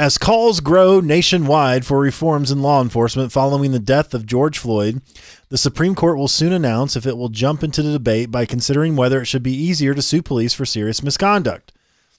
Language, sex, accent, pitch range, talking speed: English, male, American, 125-155 Hz, 200 wpm